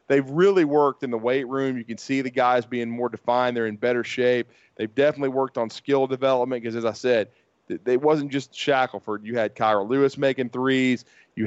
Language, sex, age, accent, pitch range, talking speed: English, male, 30-49, American, 120-135 Hz, 210 wpm